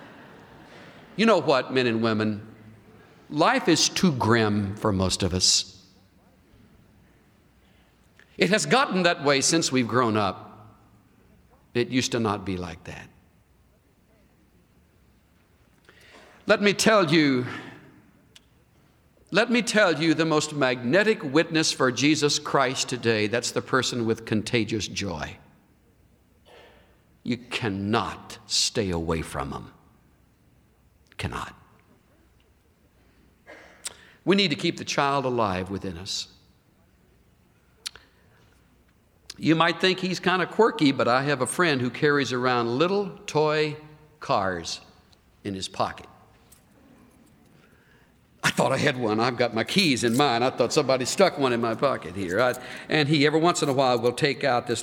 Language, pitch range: English, 100-150 Hz